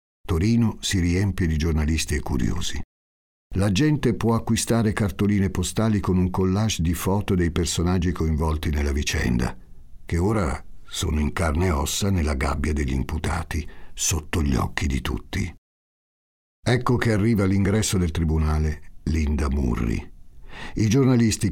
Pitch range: 75-95 Hz